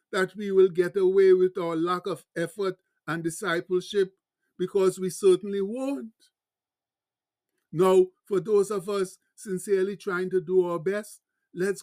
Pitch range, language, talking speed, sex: 170-200 Hz, English, 140 wpm, male